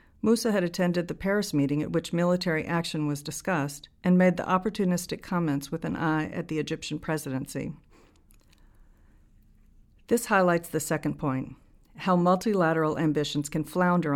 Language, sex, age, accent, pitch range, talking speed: English, female, 50-69, American, 145-175 Hz, 145 wpm